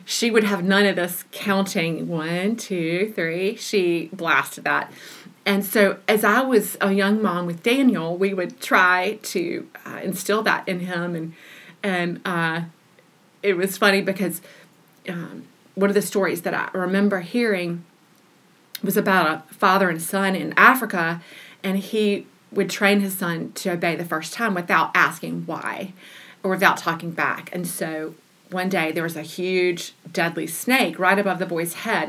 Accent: American